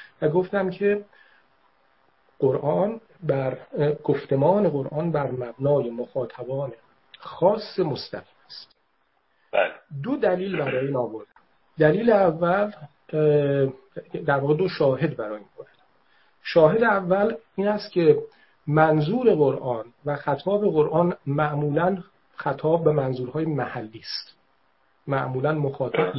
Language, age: Persian, 50-69